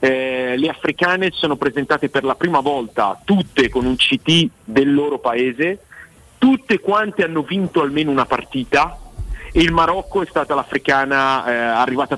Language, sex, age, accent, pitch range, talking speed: Italian, male, 40-59, native, 125-165 Hz, 150 wpm